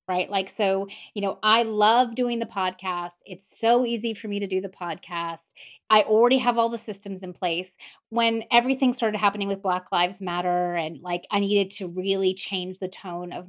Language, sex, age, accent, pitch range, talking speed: English, female, 30-49, American, 190-245 Hz, 200 wpm